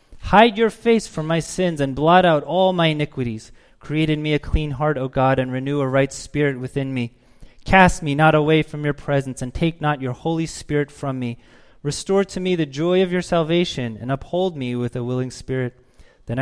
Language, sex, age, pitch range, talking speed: English, male, 30-49, 120-155 Hz, 210 wpm